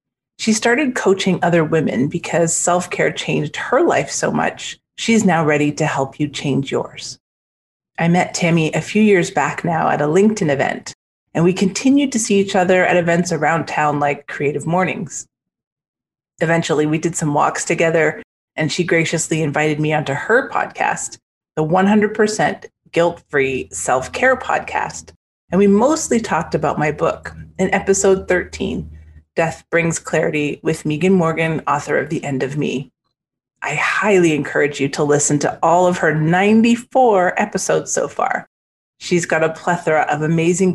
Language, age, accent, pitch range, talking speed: English, 30-49, American, 155-195 Hz, 160 wpm